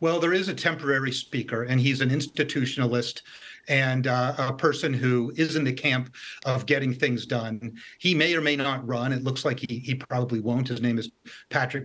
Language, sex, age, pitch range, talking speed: English, male, 40-59, 120-150 Hz, 205 wpm